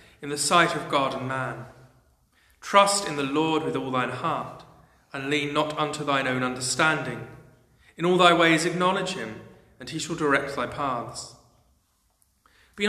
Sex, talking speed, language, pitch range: male, 165 wpm, English, 130-165 Hz